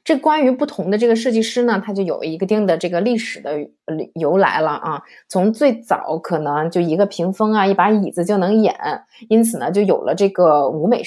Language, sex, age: Chinese, female, 20-39